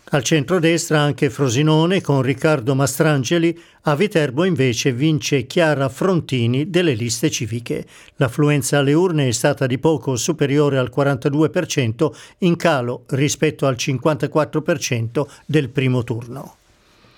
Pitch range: 140-165 Hz